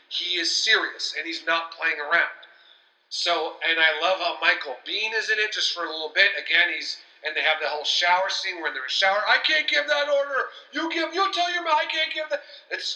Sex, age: male, 40-59